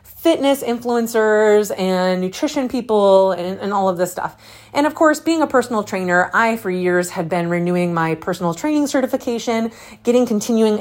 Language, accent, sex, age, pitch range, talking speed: English, American, female, 30-49, 180-250 Hz, 165 wpm